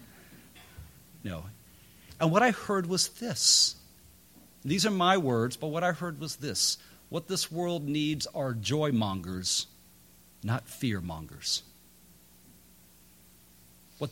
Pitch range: 95-145 Hz